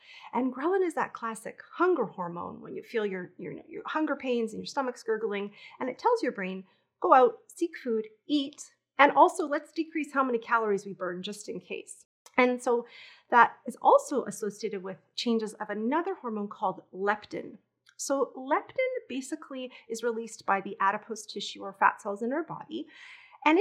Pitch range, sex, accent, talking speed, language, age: 205-295 Hz, female, American, 175 wpm, English, 30-49